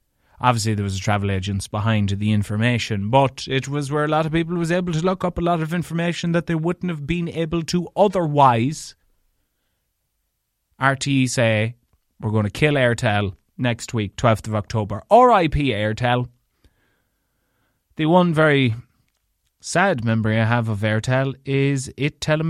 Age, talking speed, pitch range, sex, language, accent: 30-49, 160 wpm, 110-170 Hz, male, English, Irish